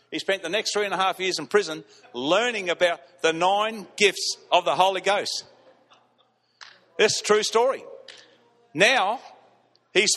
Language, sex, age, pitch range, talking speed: English, male, 50-69, 155-205 Hz, 155 wpm